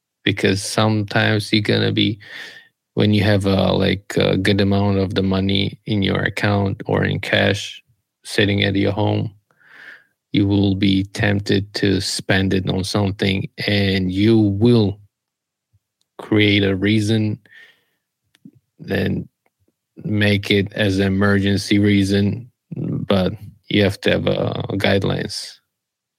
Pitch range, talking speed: 100-105 Hz, 125 wpm